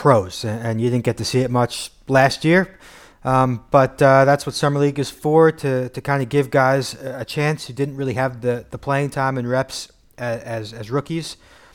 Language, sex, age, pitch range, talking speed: English, male, 30-49, 120-140 Hz, 215 wpm